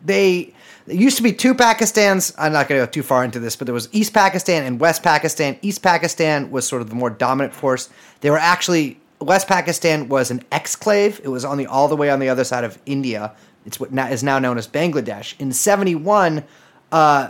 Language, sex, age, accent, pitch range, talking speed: English, male, 30-49, American, 130-170 Hz, 225 wpm